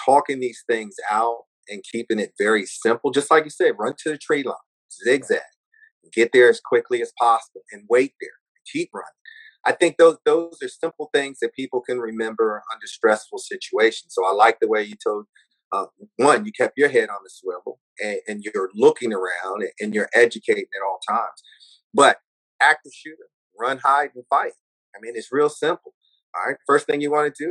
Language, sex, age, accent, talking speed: English, male, 40-59, American, 200 wpm